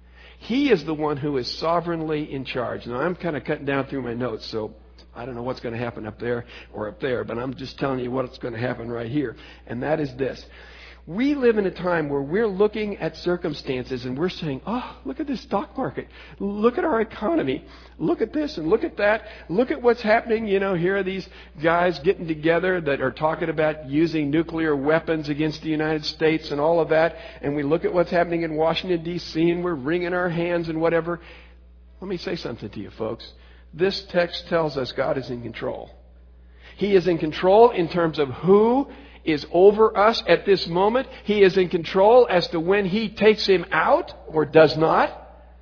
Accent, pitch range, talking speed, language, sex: American, 145-220 Hz, 215 wpm, English, male